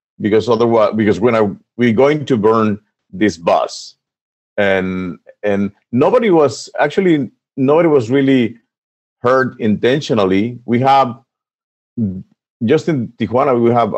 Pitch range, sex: 100-125 Hz, male